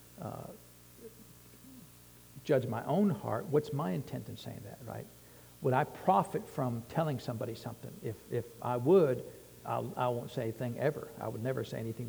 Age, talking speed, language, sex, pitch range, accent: 60-79, 175 wpm, English, male, 110-130 Hz, American